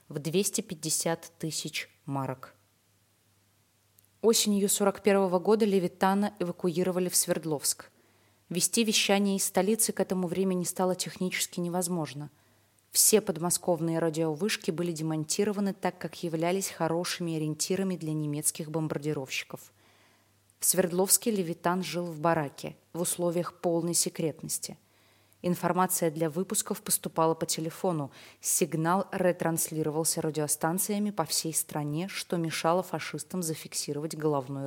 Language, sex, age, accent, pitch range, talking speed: Russian, female, 20-39, native, 155-185 Hz, 105 wpm